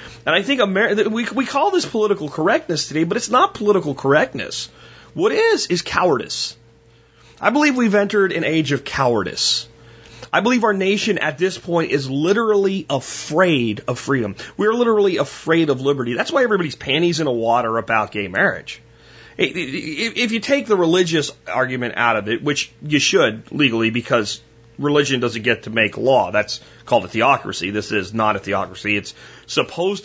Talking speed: 175 wpm